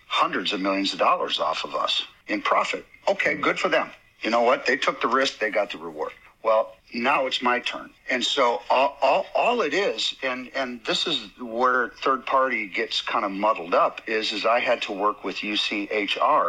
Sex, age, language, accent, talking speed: male, 50-69, English, American, 210 wpm